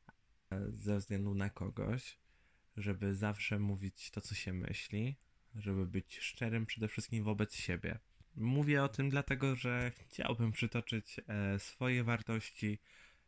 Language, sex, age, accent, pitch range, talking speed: Polish, male, 20-39, native, 95-110 Hz, 120 wpm